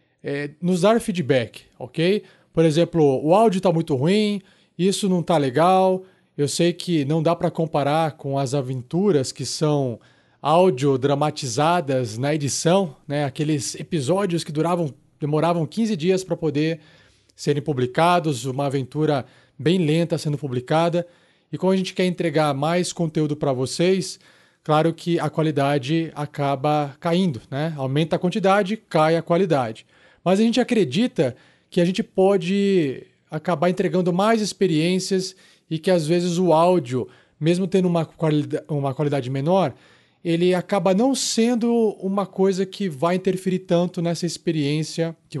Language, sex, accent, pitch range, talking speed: Portuguese, male, Brazilian, 150-185 Hz, 140 wpm